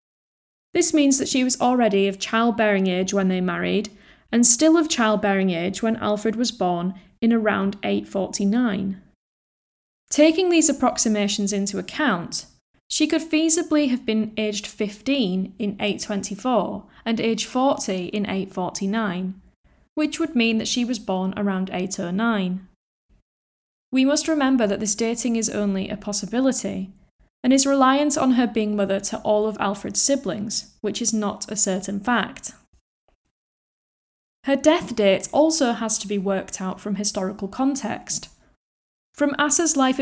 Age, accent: 10-29, British